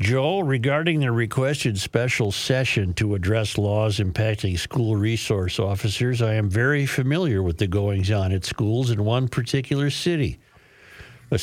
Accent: American